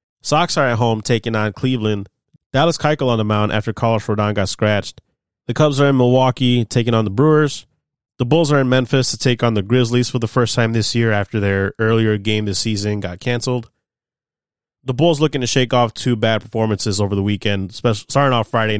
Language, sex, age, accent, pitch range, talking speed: English, male, 30-49, American, 110-135 Hz, 210 wpm